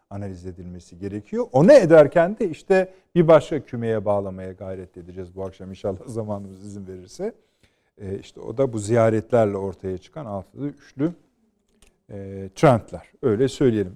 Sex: male